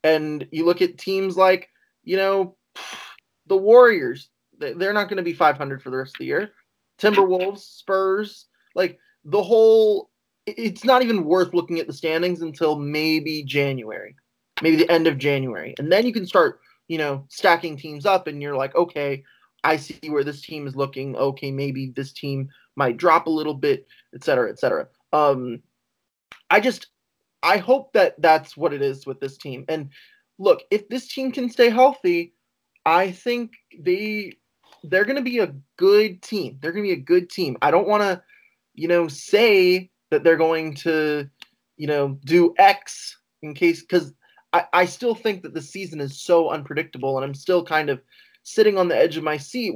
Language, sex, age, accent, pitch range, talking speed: English, male, 20-39, American, 145-205 Hz, 185 wpm